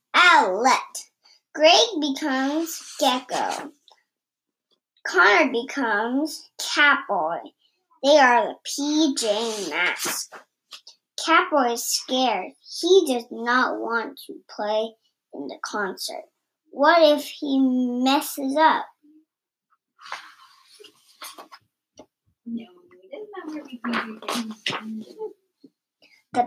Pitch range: 250-335 Hz